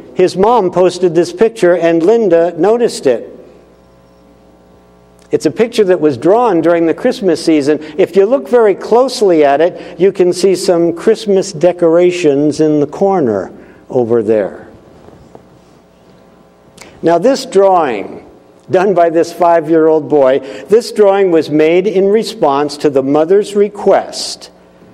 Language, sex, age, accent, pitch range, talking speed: English, male, 60-79, American, 135-185 Hz, 130 wpm